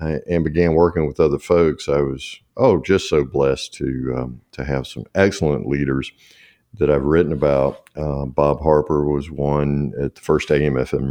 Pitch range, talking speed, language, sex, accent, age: 70-85 Hz, 175 wpm, English, male, American, 50-69